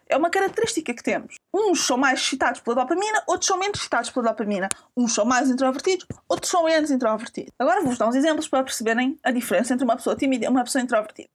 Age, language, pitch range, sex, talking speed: 20-39, Portuguese, 250-340 Hz, female, 220 wpm